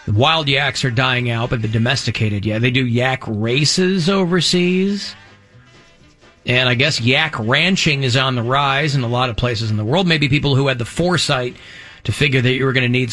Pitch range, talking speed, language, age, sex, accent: 120-165 Hz, 210 wpm, English, 40-59, male, American